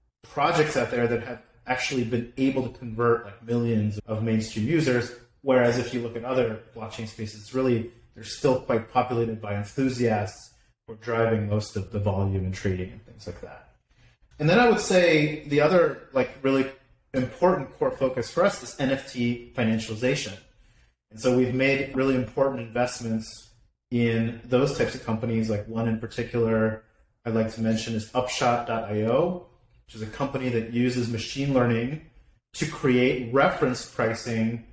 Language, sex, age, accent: English, male, 30-49, American